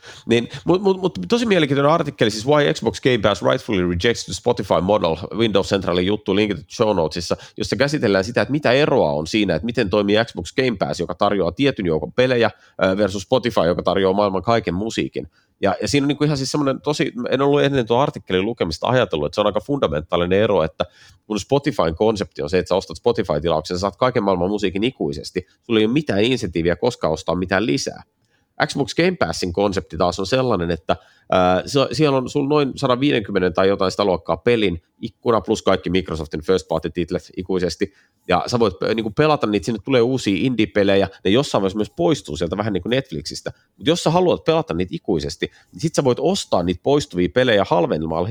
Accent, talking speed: native, 200 wpm